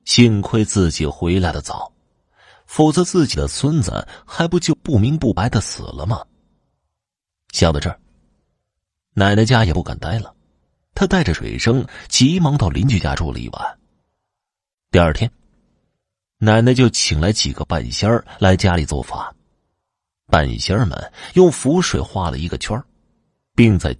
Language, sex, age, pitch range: Chinese, male, 30-49, 80-120 Hz